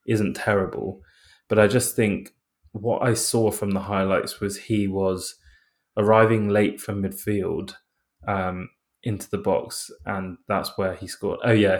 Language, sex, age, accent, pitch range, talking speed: English, male, 20-39, British, 95-110 Hz, 155 wpm